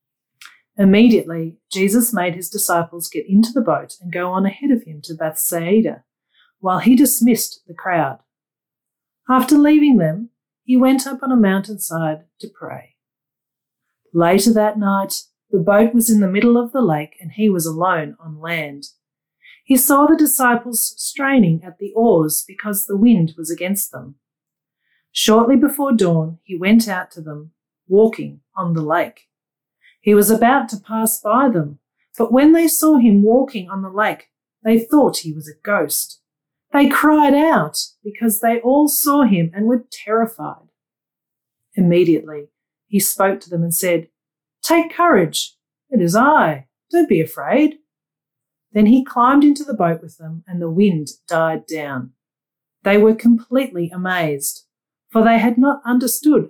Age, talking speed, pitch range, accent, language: 40-59, 155 wpm, 160-235 Hz, Australian, English